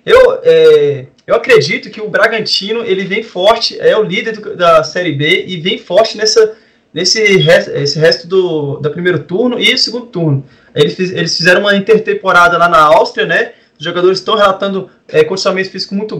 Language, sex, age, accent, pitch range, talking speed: Portuguese, male, 20-39, Brazilian, 170-215 Hz, 185 wpm